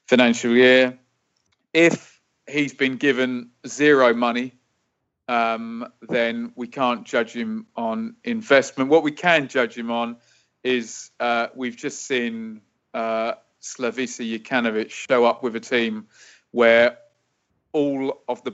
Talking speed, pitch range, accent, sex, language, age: 125 wpm, 115-135 Hz, British, male, English, 30-49